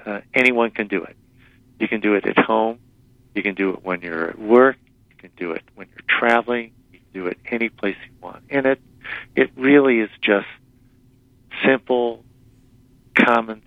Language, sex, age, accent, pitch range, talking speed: English, male, 50-69, American, 105-125 Hz, 185 wpm